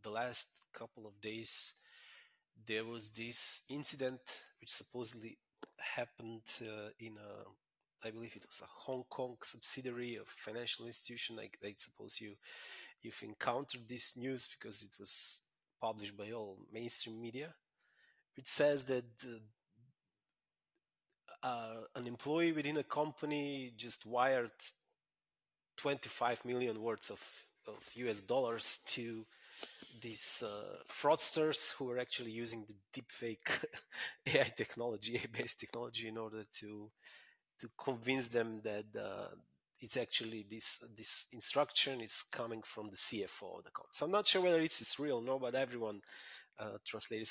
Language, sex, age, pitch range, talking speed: English, male, 30-49, 115-145 Hz, 140 wpm